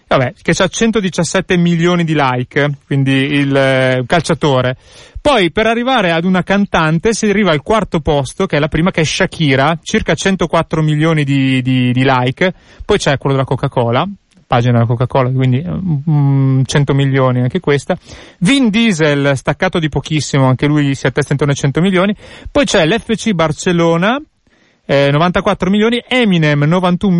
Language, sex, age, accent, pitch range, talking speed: Italian, male, 30-49, native, 140-180 Hz, 160 wpm